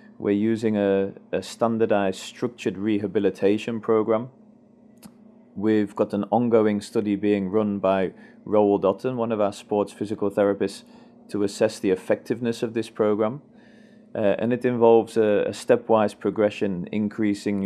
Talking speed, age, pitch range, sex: 135 wpm, 20-39, 100-110 Hz, male